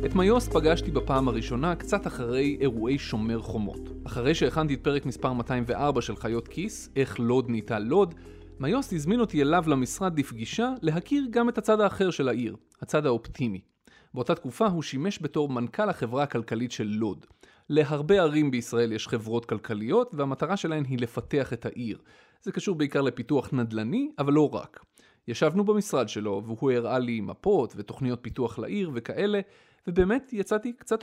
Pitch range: 120-165 Hz